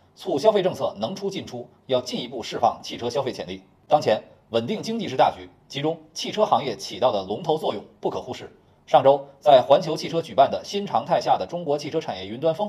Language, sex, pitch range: Chinese, male, 135-190 Hz